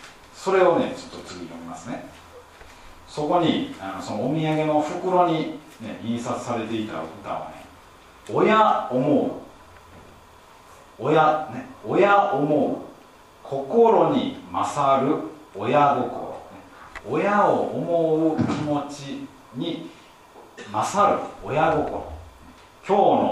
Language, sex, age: Japanese, male, 40-59